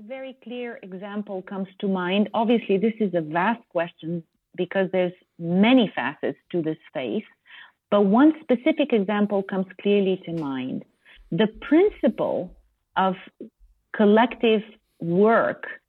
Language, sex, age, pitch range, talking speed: English, female, 40-59, 190-240 Hz, 120 wpm